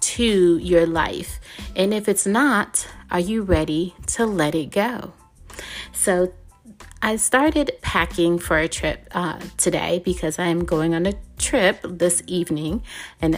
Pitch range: 165-210 Hz